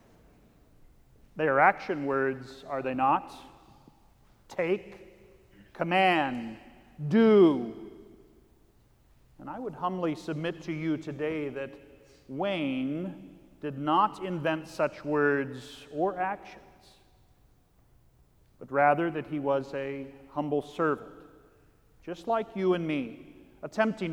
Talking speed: 100 wpm